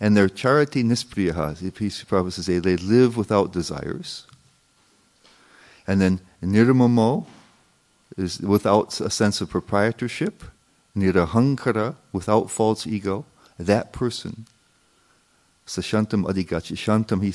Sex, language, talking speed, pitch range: male, English, 105 wpm, 90-115 Hz